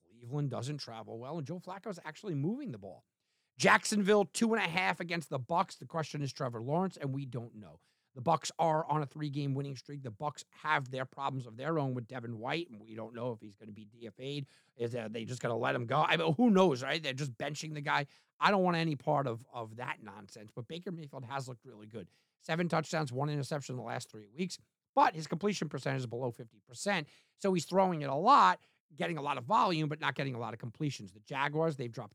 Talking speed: 245 wpm